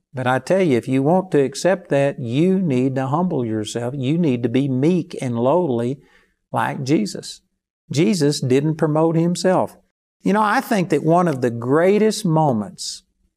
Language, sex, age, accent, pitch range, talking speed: English, male, 50-69, American, 125-160 Hz, 170 wpm